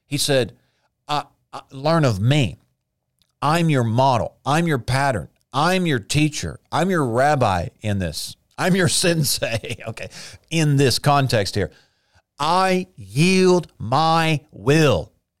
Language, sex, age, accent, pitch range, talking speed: English, male, 50-69, American, 115-165 Hz, 130 wpm